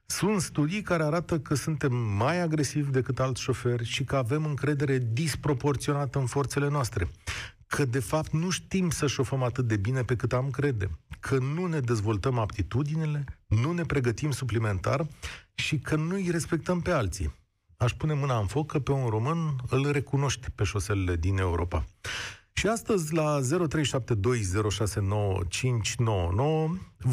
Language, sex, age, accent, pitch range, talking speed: Romanian, male, 40-59, native, 110-155 Hz, 150 wpm